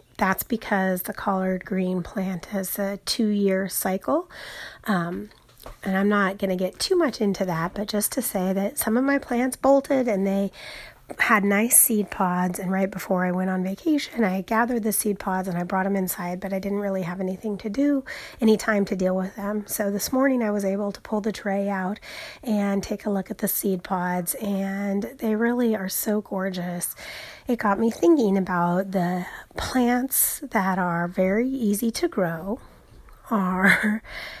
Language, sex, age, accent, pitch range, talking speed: English, female, 30-49, American, 185-220 Hz, 190 wpm